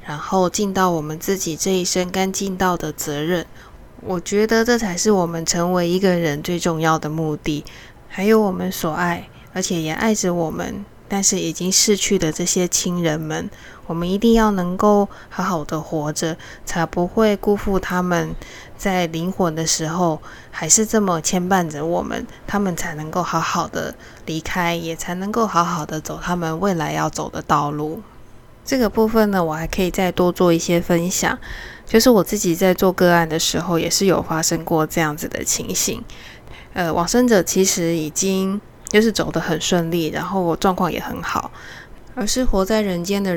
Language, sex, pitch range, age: Chinese, female, 165-200 Hz, 20-39